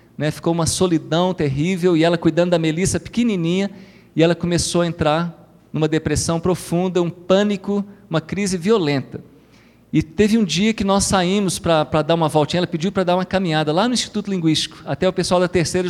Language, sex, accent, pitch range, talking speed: Portuguese, male, Brazilian, 155-185 Hz, 190 wpm